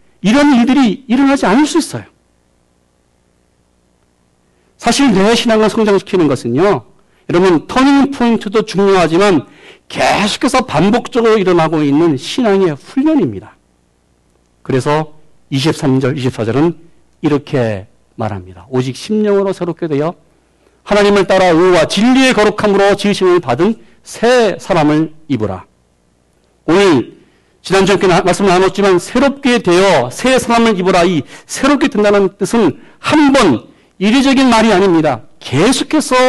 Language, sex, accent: Korean, male, native